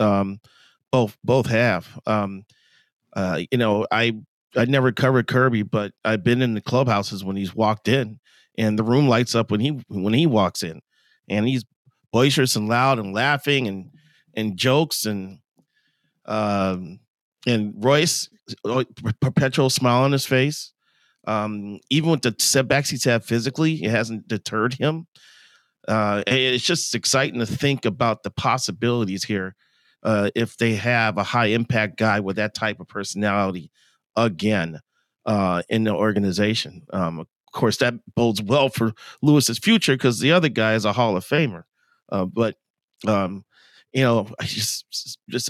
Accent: American